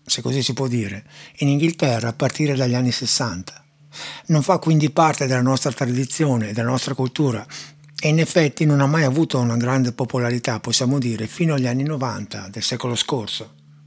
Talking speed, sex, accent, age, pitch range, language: 175 wpm, male, native, 60-79, 115-145 Hz, Italian